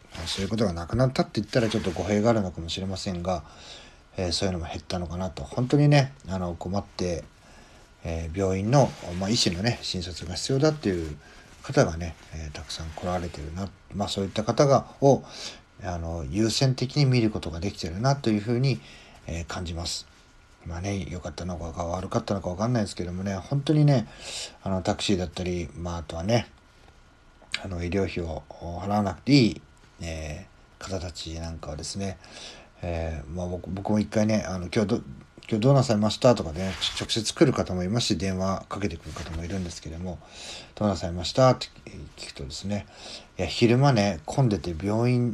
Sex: male